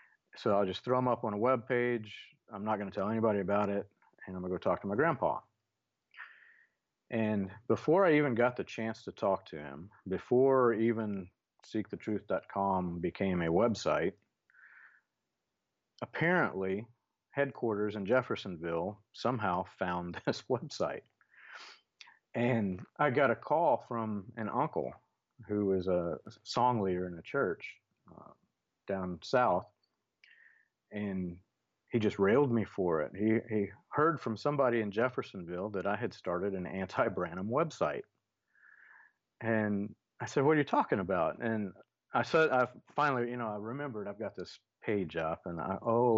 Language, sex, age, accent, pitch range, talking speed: English, male, 40-59, American, 95-120 Hz, 150 wpm